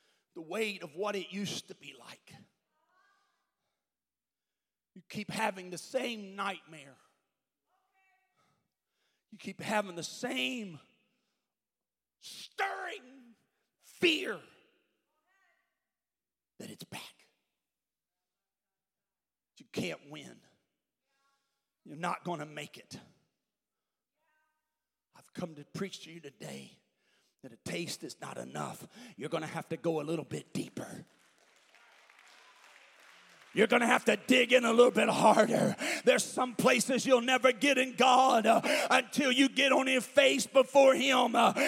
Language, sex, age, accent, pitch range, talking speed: English, male, 40-59, American, 210-295 Hz, 125 wpm